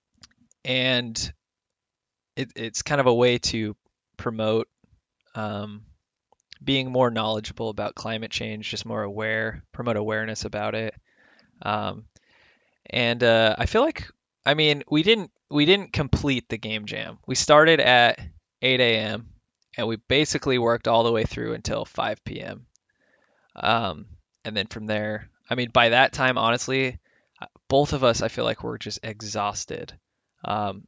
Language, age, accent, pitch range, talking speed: English, 20-39, American, 110-125 Hz, 150 wpm